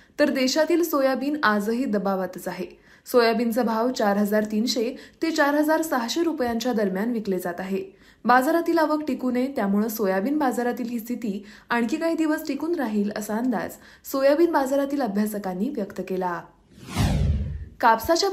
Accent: native